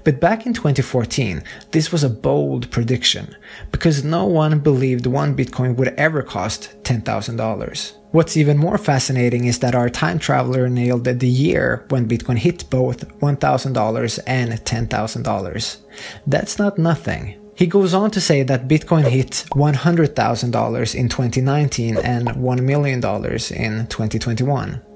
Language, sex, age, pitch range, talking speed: English, male, 20-39, 120-155 Hz, 135 wpm